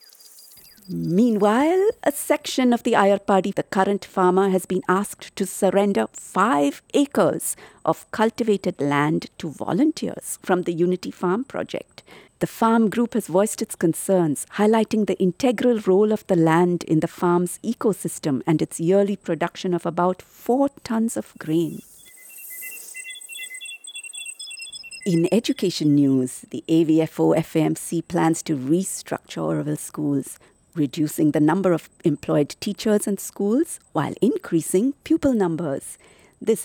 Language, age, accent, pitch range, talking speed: English, 50-69, Indian, 160-220 Hz, 125 wpm